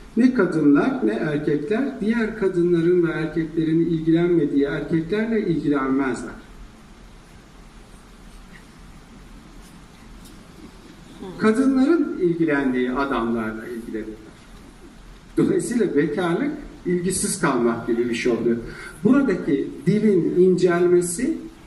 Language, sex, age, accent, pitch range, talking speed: Turkish, male, 60-79, native, 155-205 Hz, 70 wpm